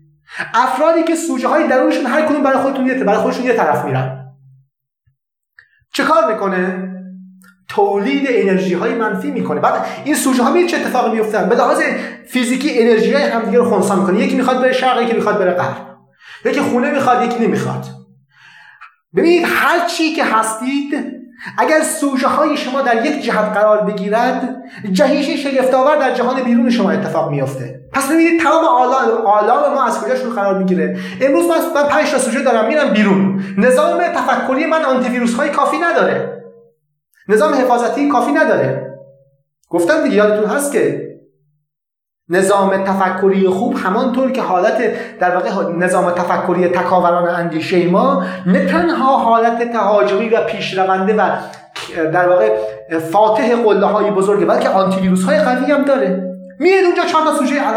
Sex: male